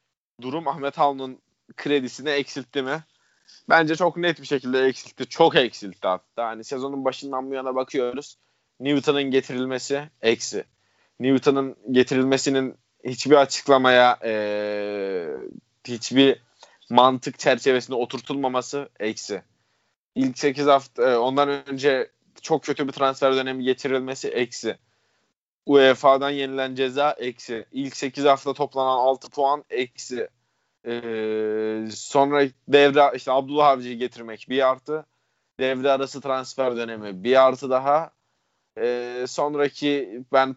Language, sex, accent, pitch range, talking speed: Turkish, male, native, 125-140 Hz, 115 wpm